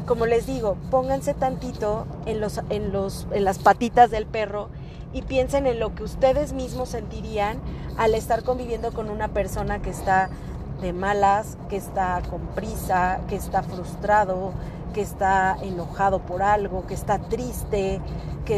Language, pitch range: Spanish, 190-240 Hz